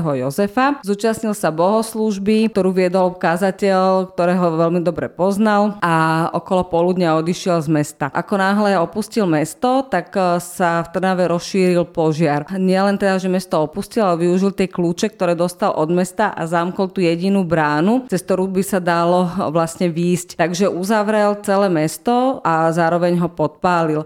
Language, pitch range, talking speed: Slovak, 170-195 Hz, 150 wpm